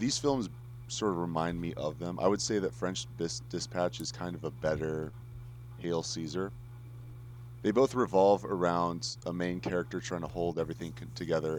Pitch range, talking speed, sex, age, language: 85-120 Hz, 170 wpm, male, 30-49, English